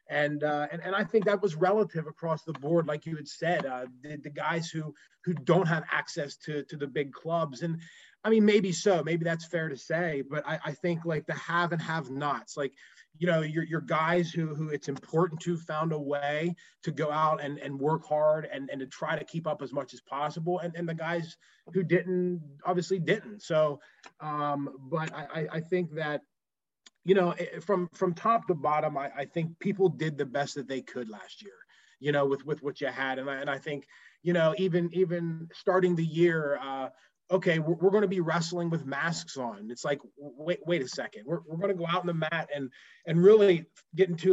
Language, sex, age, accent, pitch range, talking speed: English, male, 20-39, American, 150-180 Hz, 225 wpm